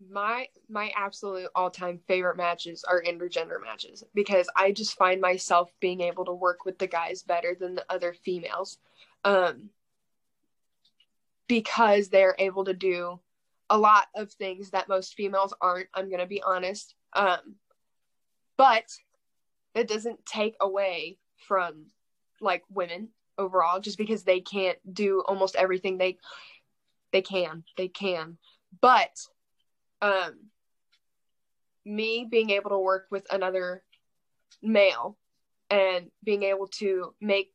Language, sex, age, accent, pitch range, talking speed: English, female, 20-39, American, 185-220 Hz, 130 wpm